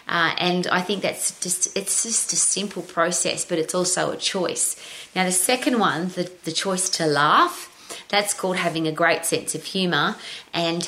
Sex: female